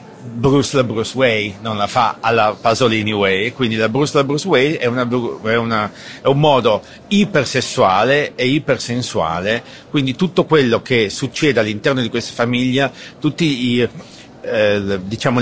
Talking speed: 150 wpm